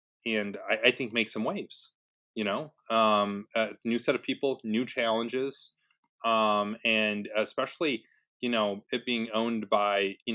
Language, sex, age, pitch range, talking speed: English, male, 30-49, 105-130 Hz, 155 wpm